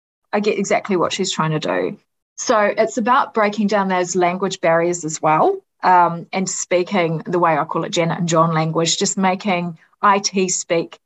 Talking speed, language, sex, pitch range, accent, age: 185 wpm, English, female, 170-195 Hz, Australian, 30-49